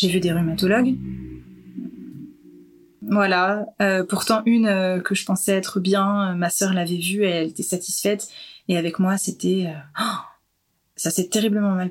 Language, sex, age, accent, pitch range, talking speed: French, female, 20-39, French, 180-210 Hz, 160 wpm